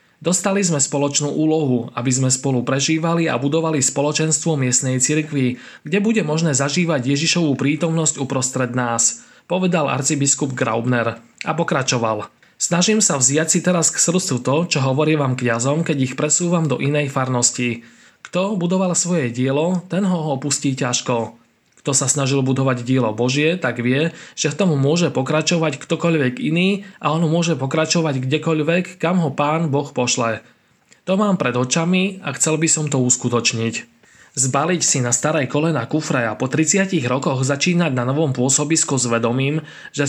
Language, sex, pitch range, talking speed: Slovak, male, 130-165 Hz, 155 wpm